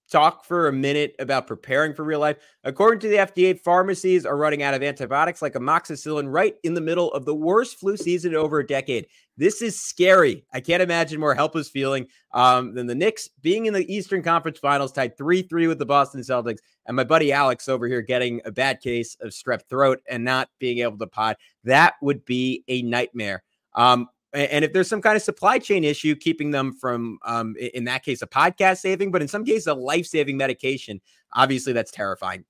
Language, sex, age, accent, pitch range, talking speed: English, male, 30-49, American, 130-170 Hz, 210 wpm